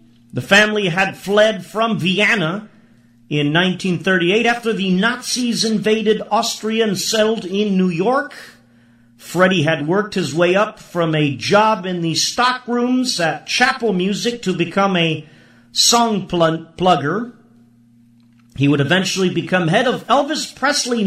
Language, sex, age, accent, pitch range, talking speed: English, male, 40-59, American, 175-245 Hz, 135 wpm